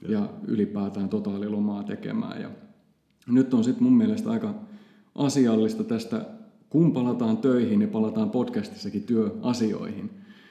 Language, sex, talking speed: Finnish, male, 115 wpm